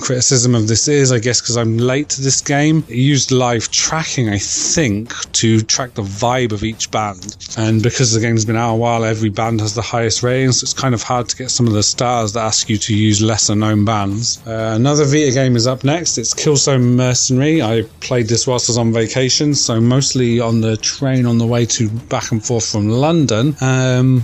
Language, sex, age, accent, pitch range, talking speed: English, male, 30-49, British, 110-130 Hz, 225 wpm